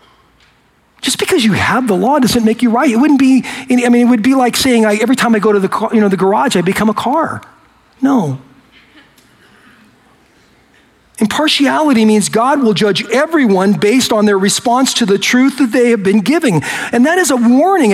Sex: male